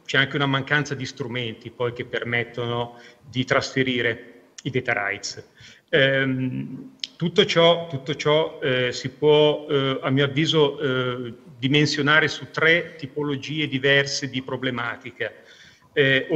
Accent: native